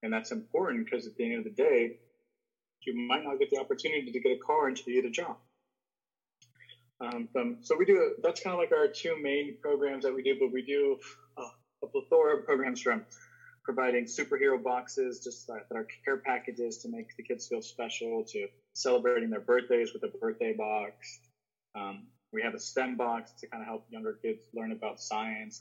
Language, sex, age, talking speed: English, male, 20-39, 205 wpm